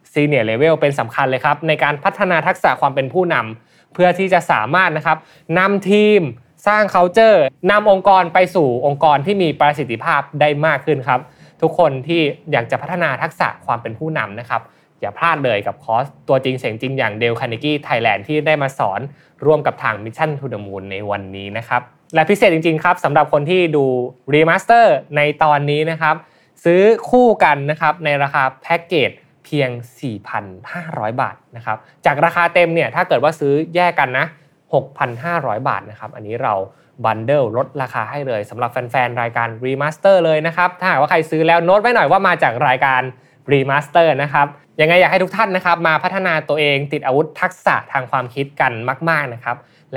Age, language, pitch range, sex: 20-39, Thai, 125-170 Hz, male